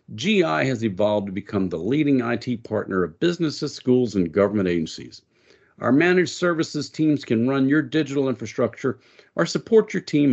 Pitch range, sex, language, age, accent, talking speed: 110-170 Hz, male, English, 50-69, American, 165 wpm